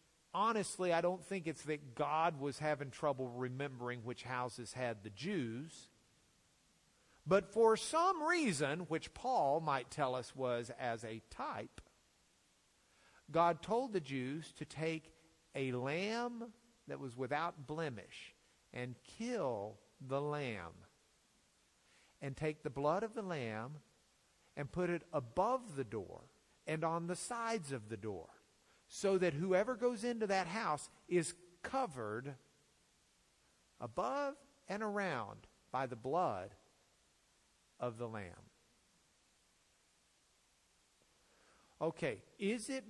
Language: English